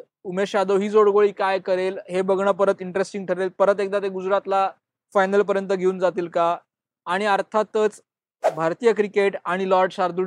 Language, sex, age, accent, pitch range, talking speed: Marathi, male, 20-39, native, 190-210 Hz, 160 wpm